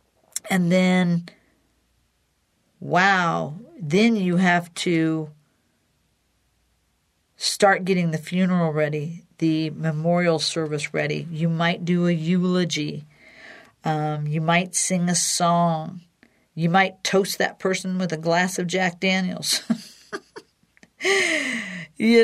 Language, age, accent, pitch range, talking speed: English, 50-69, American, 170-205 Hz, 105 wpm